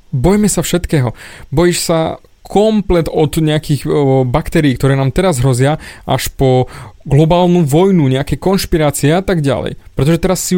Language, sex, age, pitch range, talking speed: Slovak, male, 20-39, 130-170 Hz, 140 wpm